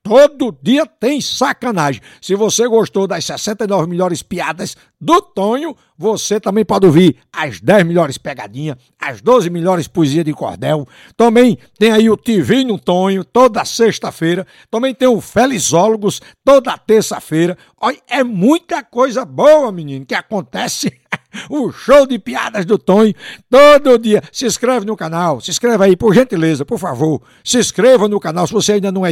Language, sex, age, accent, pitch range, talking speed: Portuguese, male, 60-79, Brazilian, 175-240 Hz, 160 wpm